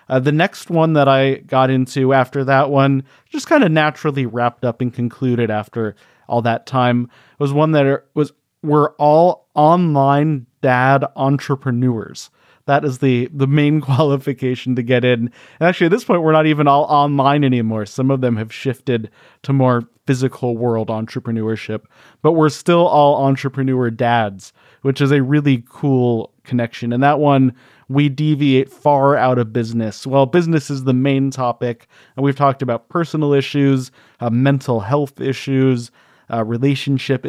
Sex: male